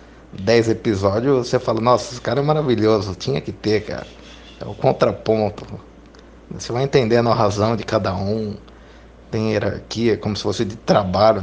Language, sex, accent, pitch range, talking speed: Portuguese, male, Brazilian, 95-115 Hz, 165 wpm